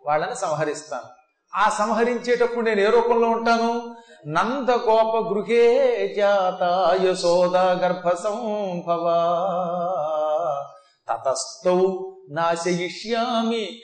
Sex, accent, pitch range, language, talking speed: male, native, 175-235 Hz, Telugu, 50 wpm